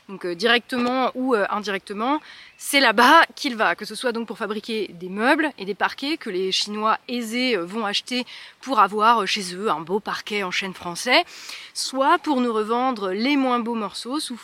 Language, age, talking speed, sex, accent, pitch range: French, 20-39, 185 wpm, female, French, 195-255 Hz